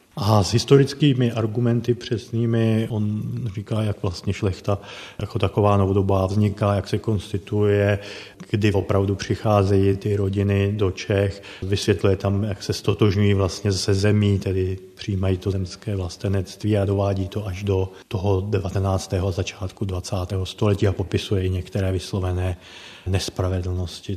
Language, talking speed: Czech, 130 wpm